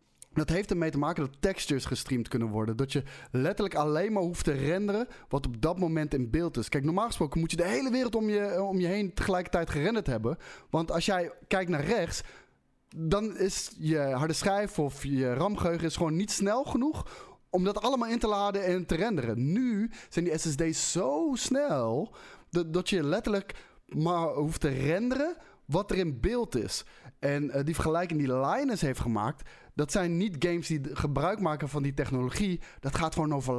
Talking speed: 190 wpm